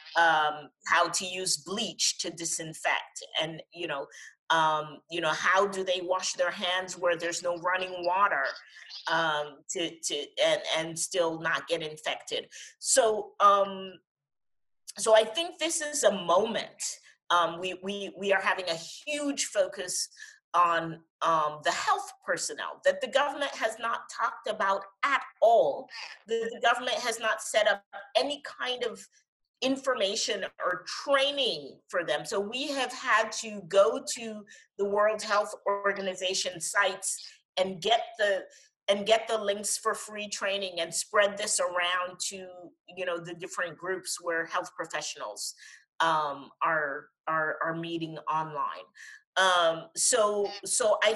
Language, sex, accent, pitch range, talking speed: English, female, American, 175-255 Hz, 145 wpm